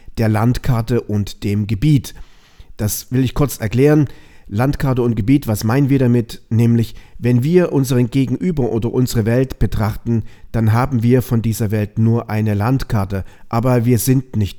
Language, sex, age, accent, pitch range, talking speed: German, male, 40-59, German, 105-130 Hz, 160 wpm